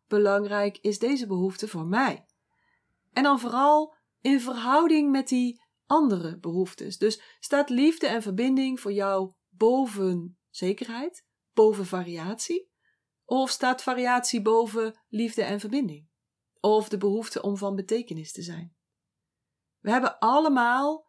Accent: Dutch